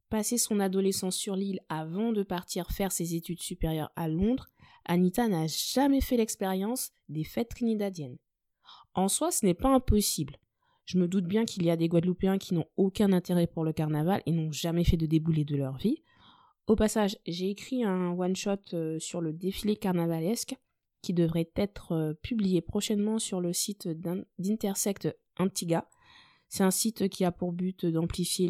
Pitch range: 165-205 Hz